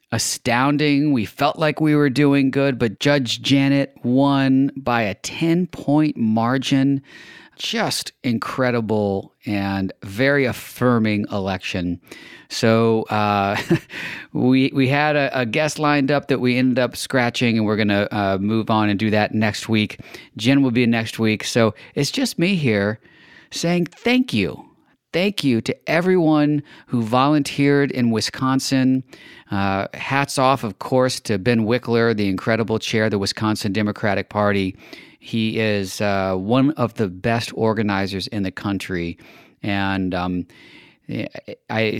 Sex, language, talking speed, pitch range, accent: male, English, 145 wpm, 105-135 Hz, American